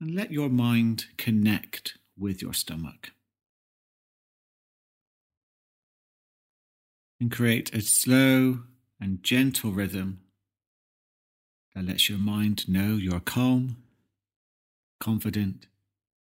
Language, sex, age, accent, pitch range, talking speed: English, male, 40-59, British, 95-115 Hz, 85 wpm